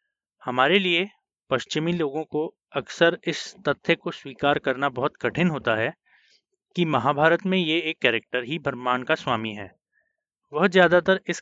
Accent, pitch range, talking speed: native, 135-175 Hz, 150 wpm